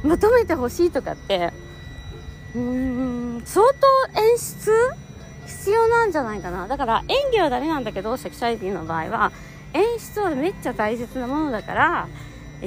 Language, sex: Japanese, female